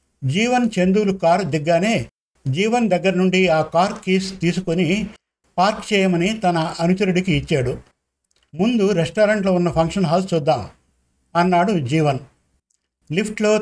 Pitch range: 160-195 Hz